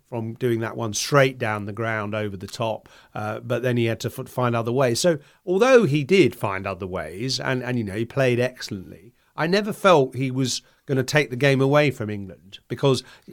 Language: English